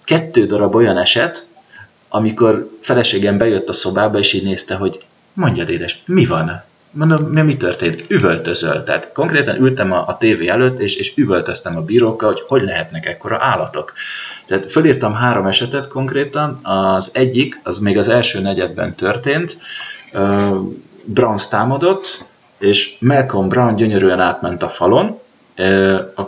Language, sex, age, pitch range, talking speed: Hungarian, male, 30-49, 95-125 Hz, 140 wpm